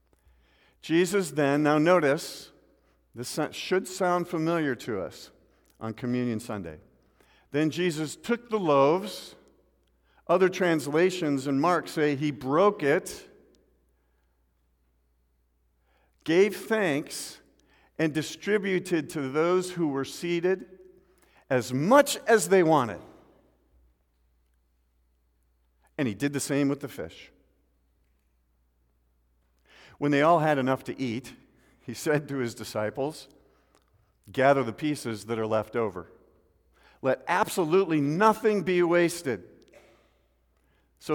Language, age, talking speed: English, 50-69, 105 wpm